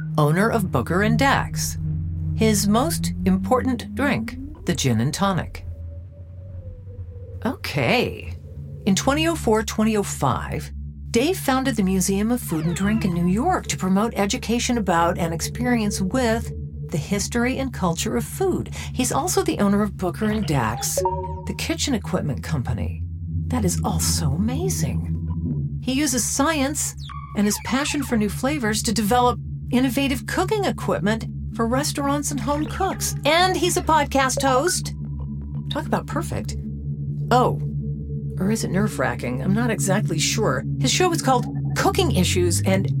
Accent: American